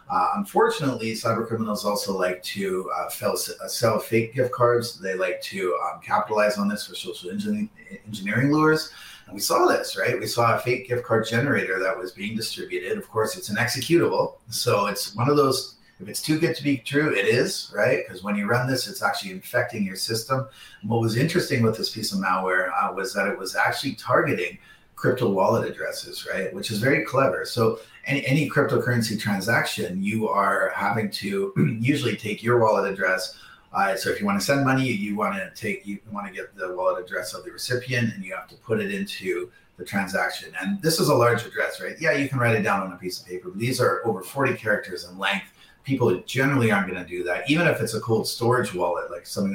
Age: 30-49